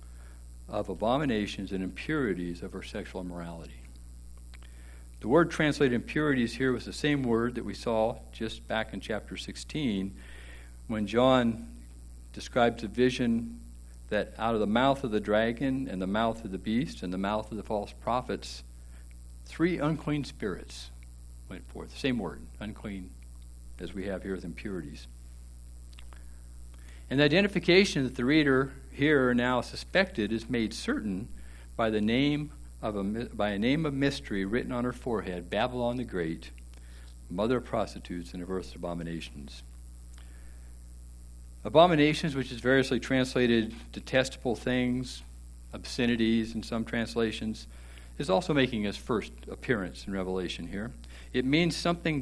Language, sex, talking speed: English, male, 140 wpm